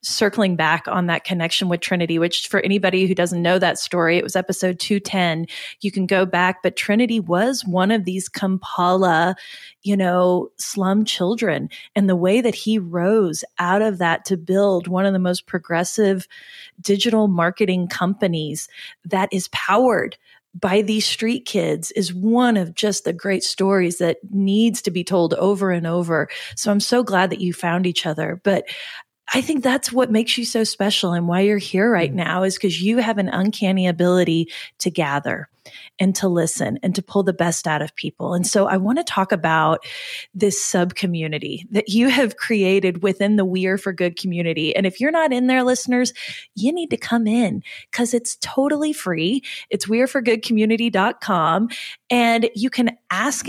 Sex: female